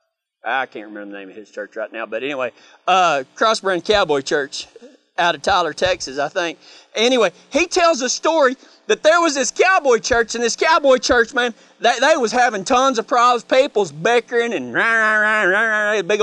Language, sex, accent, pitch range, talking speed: English, male, American, 230-325 Hz, 180 wpm